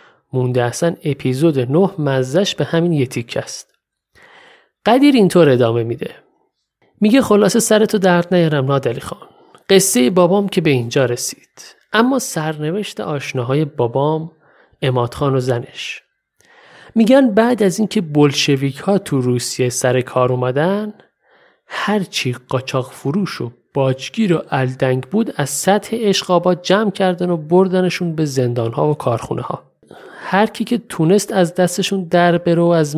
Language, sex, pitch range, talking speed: Persian, male, 135-200 Hz, 135 wpm